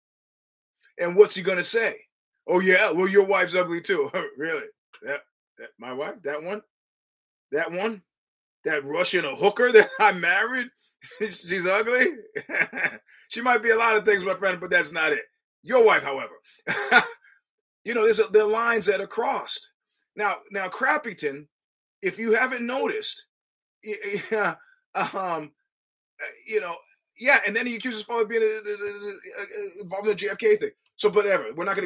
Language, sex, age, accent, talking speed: English, male, 30-49, American, 160 wpm